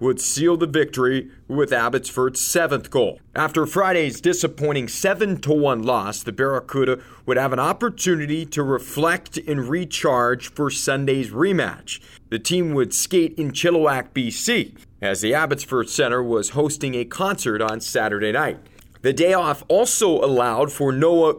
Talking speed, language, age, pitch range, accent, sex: 145 wpm, English, 40-59, 125-160 Hz, American, male